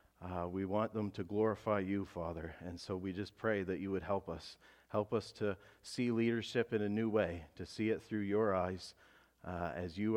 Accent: American